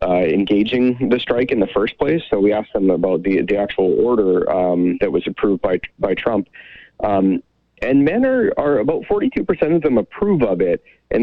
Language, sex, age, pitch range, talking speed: English, male, 30-49, 95-125 Hz, 200 wpm